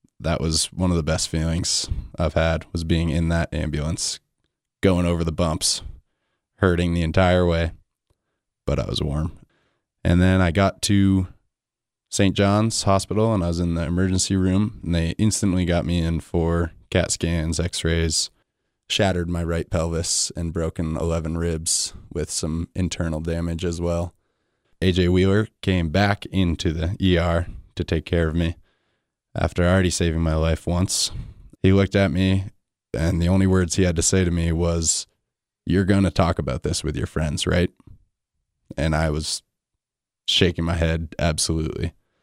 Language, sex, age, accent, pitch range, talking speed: English, male, 20-39, American, 85-95 Hz, 165 wpm